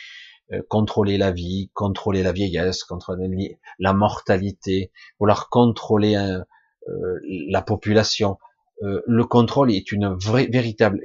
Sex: male